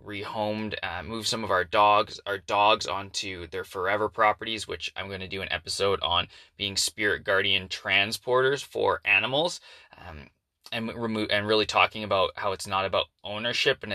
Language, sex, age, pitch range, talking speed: English, male, 20-39, 100-120 Hz, 170 wpm